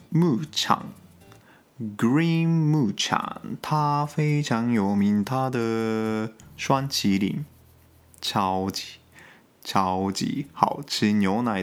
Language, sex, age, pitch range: Chinese, male, 20-39, 100-145 Hz